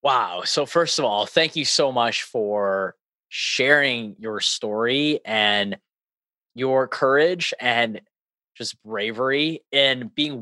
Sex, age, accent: male, 20-39, American